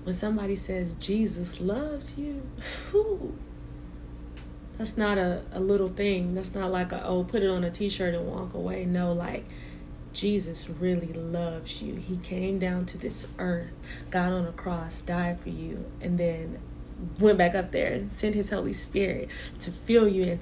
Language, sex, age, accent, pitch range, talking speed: English, female, 20-39, American, 165-195 Hz, 170 wpm